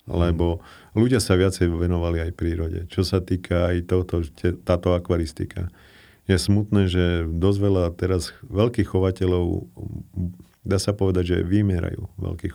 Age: 40-59